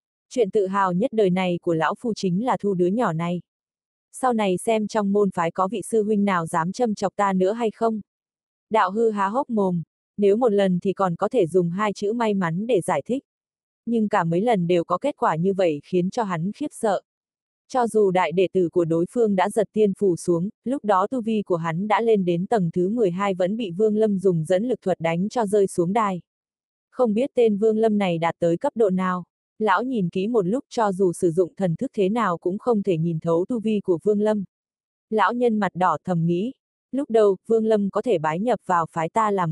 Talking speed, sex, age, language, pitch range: 240 wpm, female, 20-39, Vietnamese, 180-220 Hz